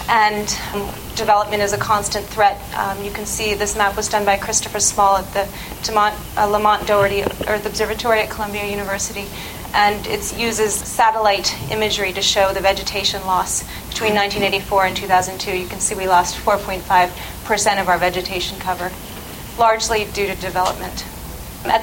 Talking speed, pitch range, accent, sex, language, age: 160 wpm, 200-230 Hz, American, female, English, 30-49